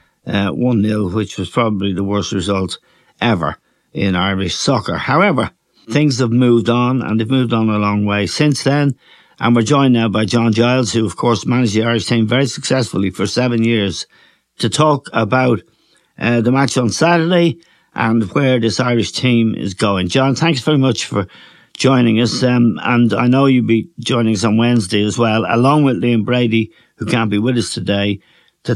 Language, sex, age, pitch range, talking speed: English, male, 60-79, 110-130 Hz, 190 wpm